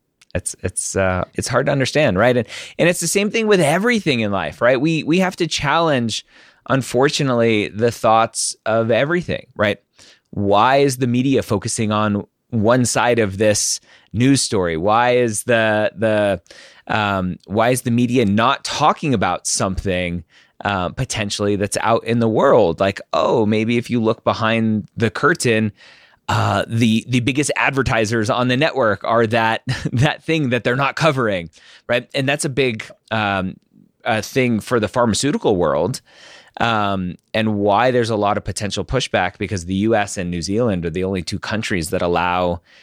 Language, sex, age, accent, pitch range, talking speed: English, male, 20-39, American, 100-130 Hz, 170 wpm